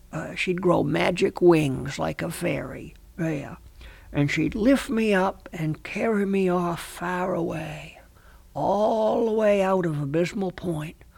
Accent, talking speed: American, 150 wpm